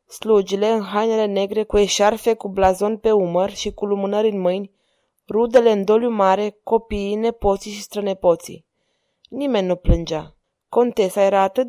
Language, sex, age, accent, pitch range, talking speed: Romanian, female, 20-39, native, 200-230 Hz, 150 wpm